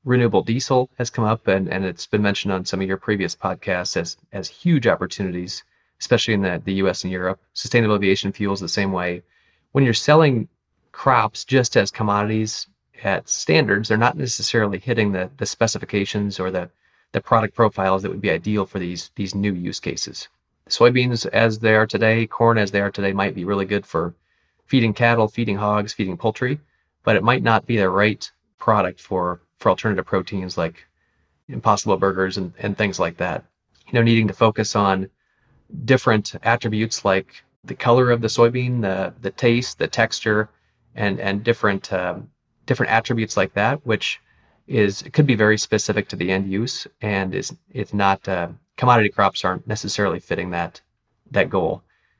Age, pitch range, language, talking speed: 30-49, 95-120 Hz, English, 175 wpm